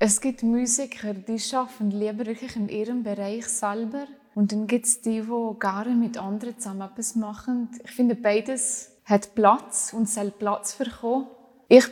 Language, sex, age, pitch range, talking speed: French, female, 20-39, 210-245 Hz, 160 wpm